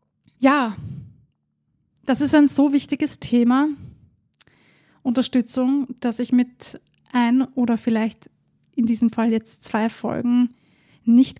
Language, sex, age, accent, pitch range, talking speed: German, female, 20-39, German, 230-260 Hz, 110 wpm